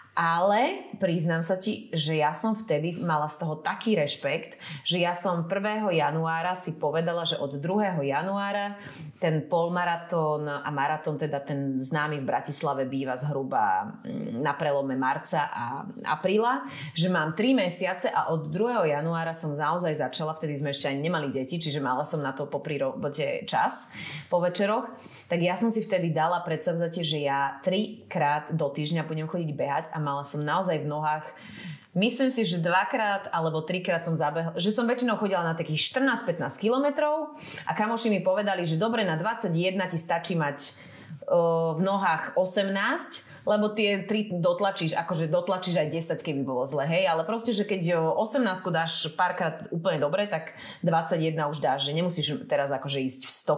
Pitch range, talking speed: 150-195 Hz, 165 wpm